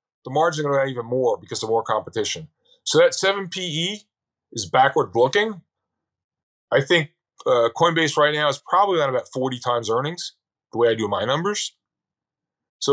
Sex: male